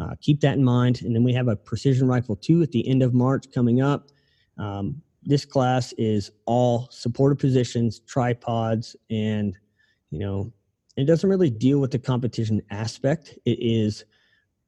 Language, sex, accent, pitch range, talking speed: English, male, American, 110-135 Hz, 170 wpm